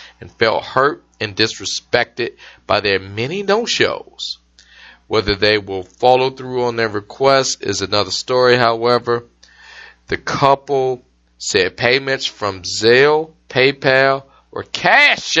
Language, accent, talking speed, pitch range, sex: English, American, 115 wpm, 95-140 Hz, male